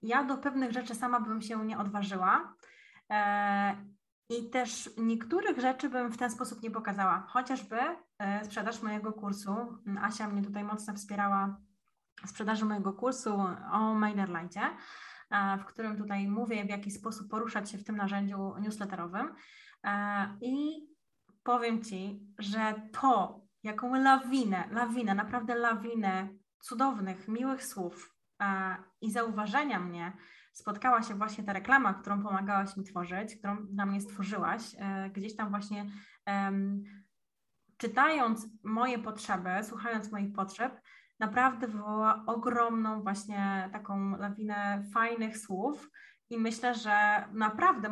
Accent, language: native, Polish